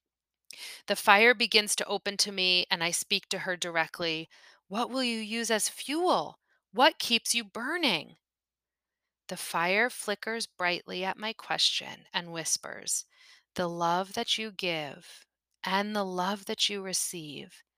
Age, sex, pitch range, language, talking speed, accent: 30-49, female, 175-220 Hz, English, 145 wpm, American